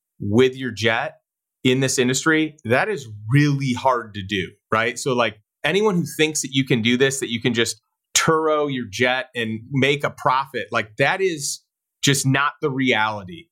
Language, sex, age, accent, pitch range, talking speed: English, male, 30-49, American, 125-145 Hz, 180 wpm